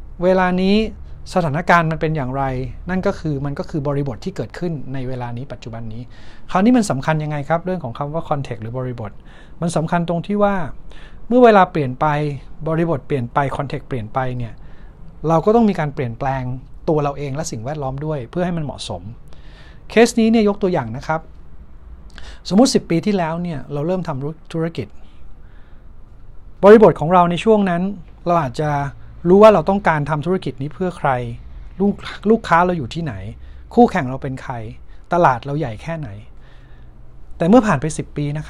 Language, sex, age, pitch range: Thai, male, 60-79, 130-180 Hz